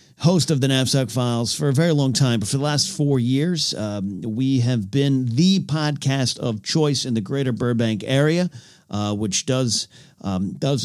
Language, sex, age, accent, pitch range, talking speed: English, male, 40-59, American, 110-140 Hz, 190 wpm